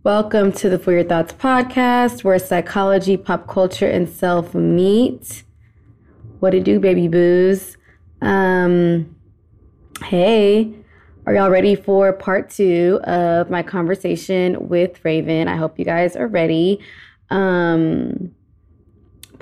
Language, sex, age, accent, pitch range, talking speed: English, female, 20-39, American, 165-195 Hz, 120 wpm